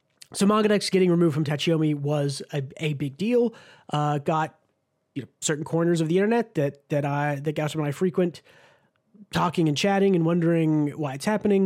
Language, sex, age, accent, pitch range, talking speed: English, male, 30-49, American, 150-190 Hz, 185 wpm